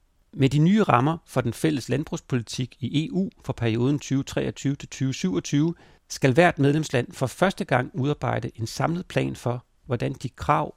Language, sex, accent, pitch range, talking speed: Danish, male, native, 120-155 Hz, 150 wpm